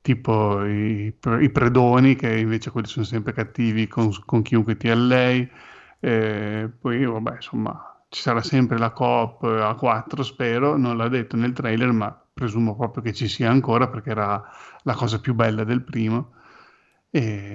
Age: 30-49